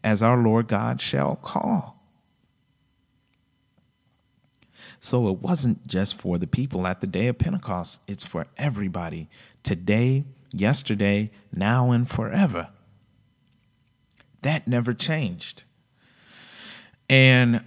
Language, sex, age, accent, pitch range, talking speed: English, male, 40-59, American, 90-120 Hz, 100 wpm